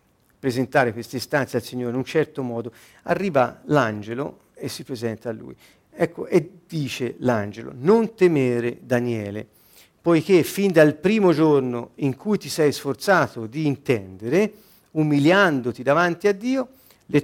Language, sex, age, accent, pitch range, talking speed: Italian, male, 50-69, native, 115-150 Hz, 140 wpm